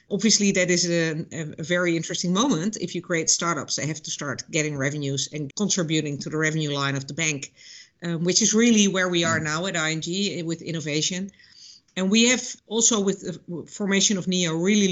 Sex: female